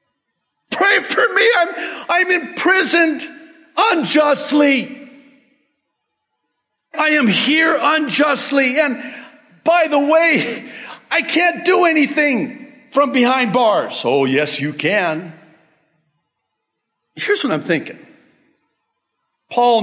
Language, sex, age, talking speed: English, male, 50-69, 95 wpm